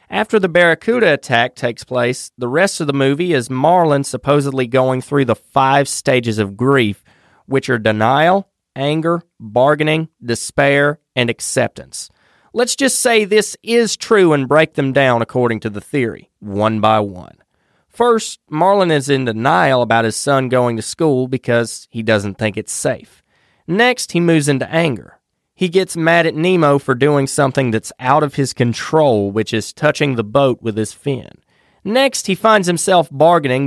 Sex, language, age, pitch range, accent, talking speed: male, English, 30-49, 125-170 Hz, American, 170 wpm